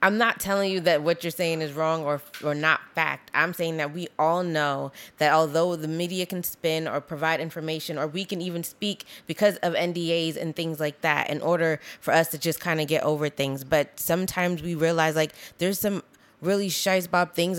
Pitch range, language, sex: 165-210 Hz, English, female